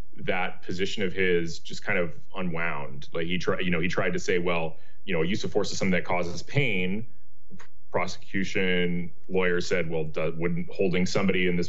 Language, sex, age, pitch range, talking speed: English, male, 30-49, 85-95 Hz, 190 wpm